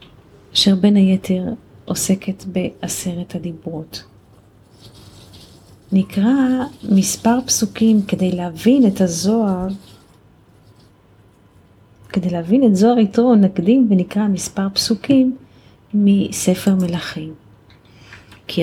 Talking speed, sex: 80 wpm, female